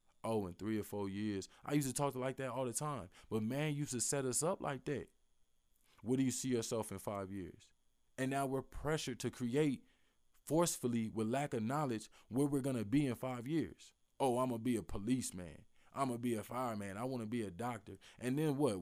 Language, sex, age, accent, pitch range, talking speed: English, male, 20-39, American, 110-140 Hz, 235 wpm